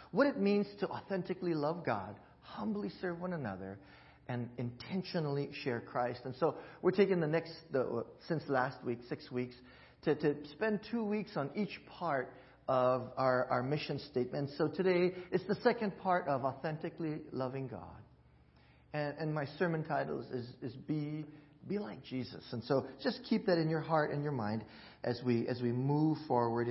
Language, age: English, 40-59